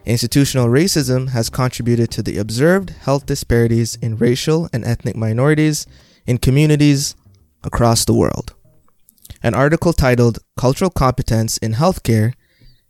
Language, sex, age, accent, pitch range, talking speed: English, male, 20-39, American, 115-135 Hz, 120 wpm